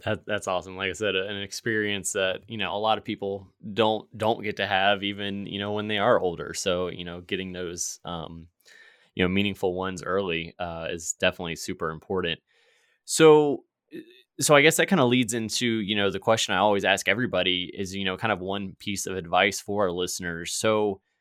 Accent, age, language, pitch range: American, 20-39, English, 95-115 Hz